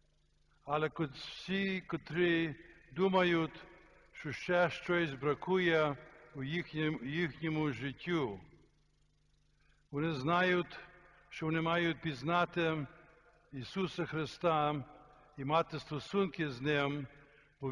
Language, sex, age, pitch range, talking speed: Ukrainian, male, 60-79, 145-175 Hz, 90 wpm